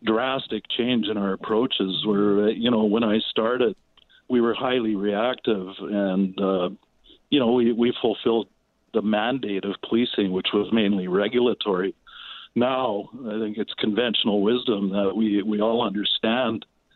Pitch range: 100-115 Hz